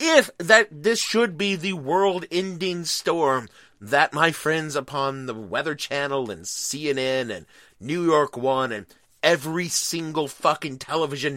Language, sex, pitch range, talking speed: English, male, 130-190 Hz, 135 wpm